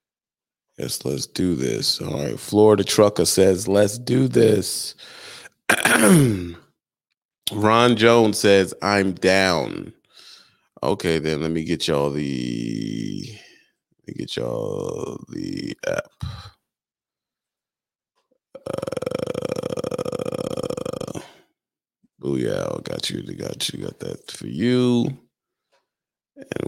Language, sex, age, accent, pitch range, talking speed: English, male, 30-49, American, 95-145 Hz, 95 wpm